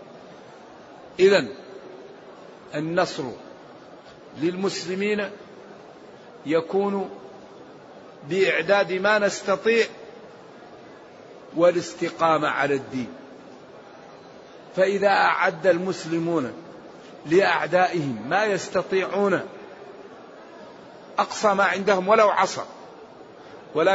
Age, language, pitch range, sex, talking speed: 50-69, Arabic, 170-210 Hz, male, 55 wpm